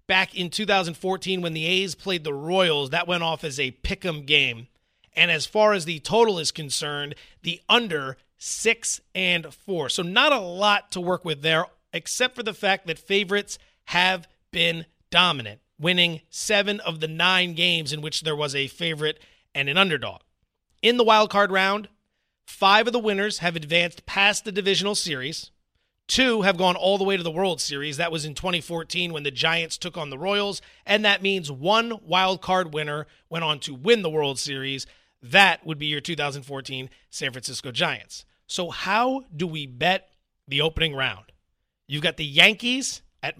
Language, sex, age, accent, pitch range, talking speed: English, male, 30-49, American, 150-195 Hz, 185 wpm